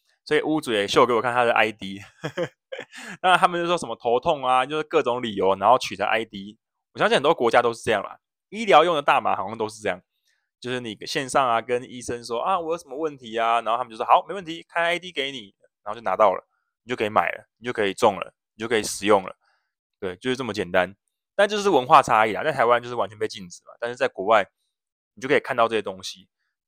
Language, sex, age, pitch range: Chinese, male, 20-39, 120-200 Hz